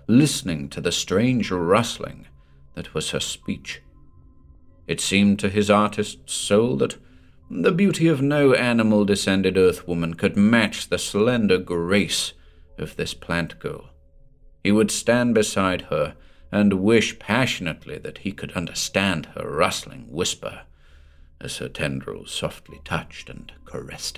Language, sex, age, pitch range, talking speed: English, male, 50-69, 80-110 Hz, 130 wpm